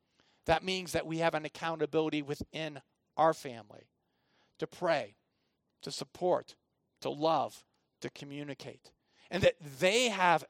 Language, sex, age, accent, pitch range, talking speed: English, male, 50-69, American, 145-185 Hz, 125 wpm